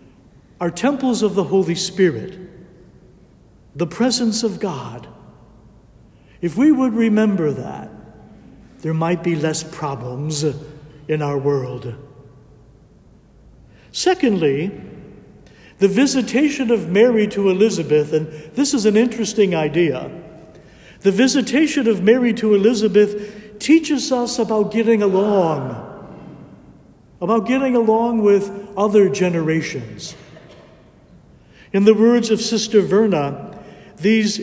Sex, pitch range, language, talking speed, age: male, 165-225 Hz, English, 105 wpm, 60-79